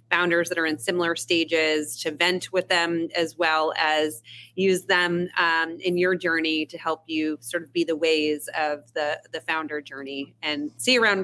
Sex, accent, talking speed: female, American, 185 wpm